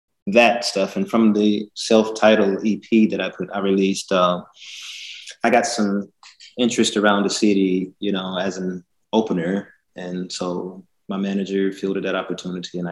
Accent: American